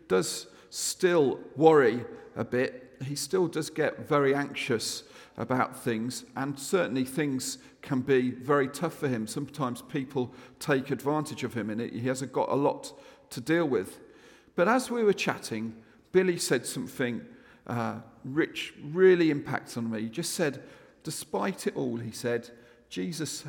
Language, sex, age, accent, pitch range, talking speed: English, male, 50-69, British, 120-160 Hz, 155 wpm